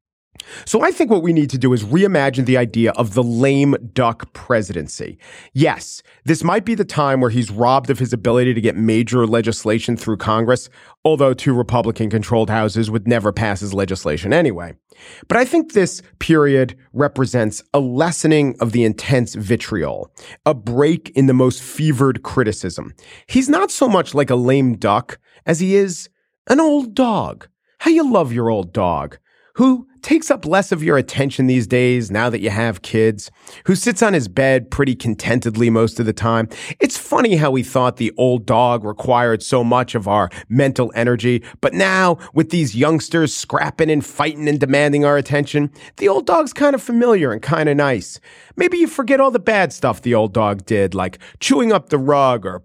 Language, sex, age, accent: English, male, 40-59, American